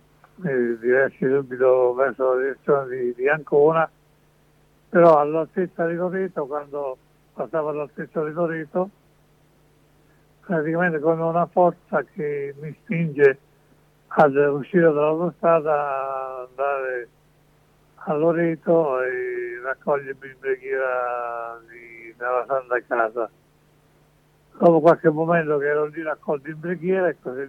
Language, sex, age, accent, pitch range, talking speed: Italian, male, 60-79, native, 130-170 Hz, 105 wpm